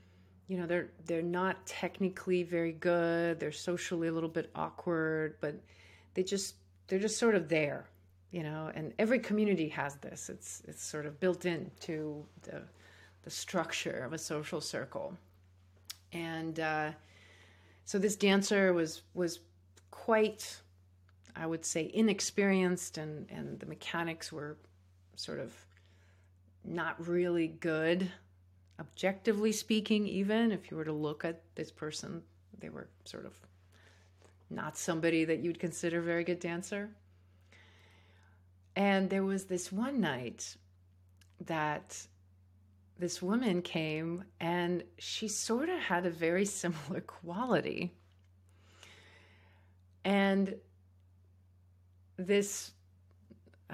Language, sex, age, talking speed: English, female, 40-59, 120 wpm